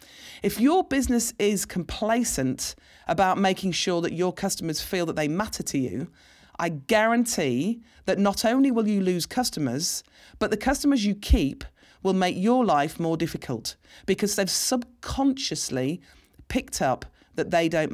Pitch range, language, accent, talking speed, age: 155-210 Hz, English, British, 150 wpm, 40-59